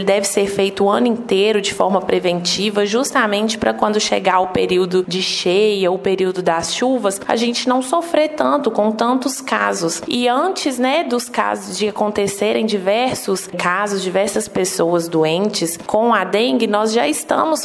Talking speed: 165 wpm